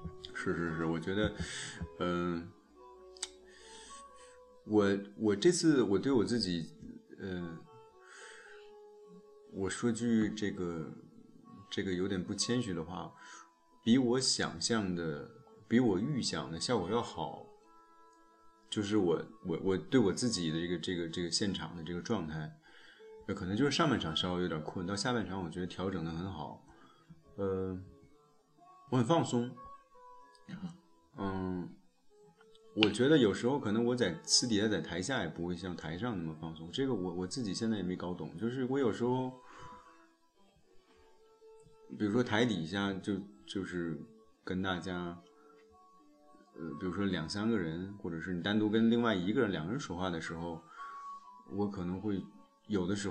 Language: Chinese